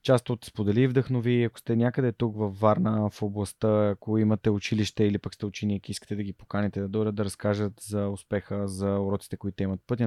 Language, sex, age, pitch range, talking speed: Bulgarian, male, 20-39, 100-120 Hz, 205 wpm